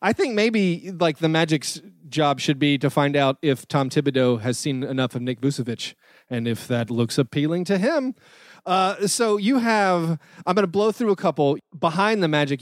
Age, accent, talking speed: 30-49, American, 200 wpm